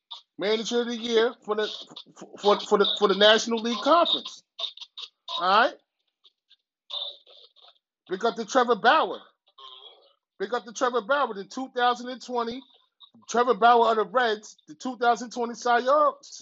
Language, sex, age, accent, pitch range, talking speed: English, male, 30-49, American, 215-260 Hz, 130 wpm